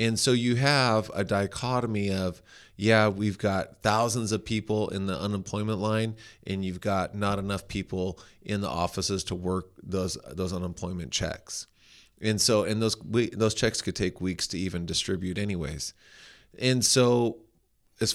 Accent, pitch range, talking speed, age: American, 95-115 Hz, 160 wpm, 30-49